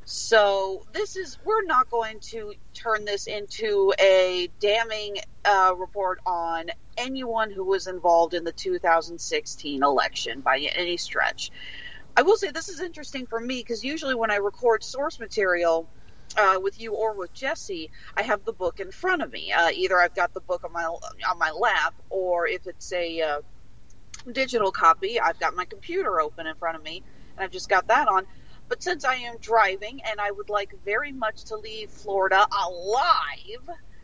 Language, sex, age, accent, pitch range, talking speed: English, female, 40-59, American, 175-260 Hz, 180 wpm